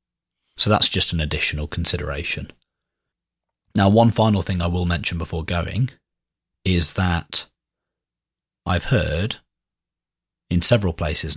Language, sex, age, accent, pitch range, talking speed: English, male, 30-49, British, 80-95 Hz, 115 wpm